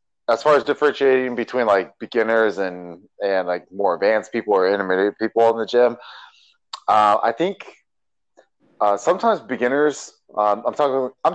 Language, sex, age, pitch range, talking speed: English, male, 30-49, 95-120 Hz, 155 wpm